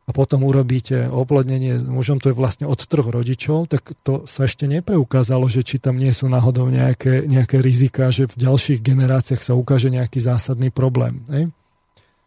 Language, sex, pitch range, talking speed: Slovak, male, 125-145 Hz, 170 wpm